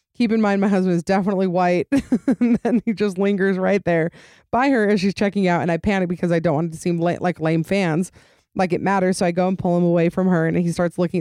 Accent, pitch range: American, 170-210 Hz